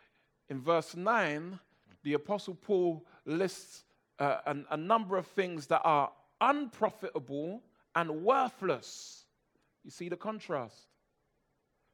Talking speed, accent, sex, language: 105 wpm, British, male, English